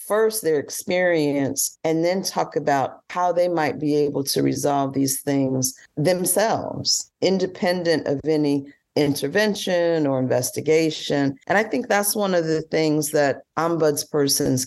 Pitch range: 135-160 Hz